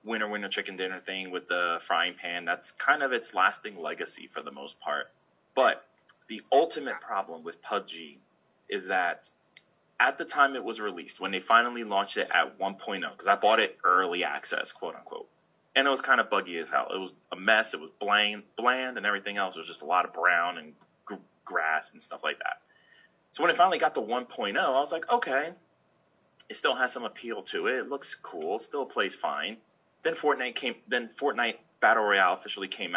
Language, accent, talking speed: English, American, 205 wpm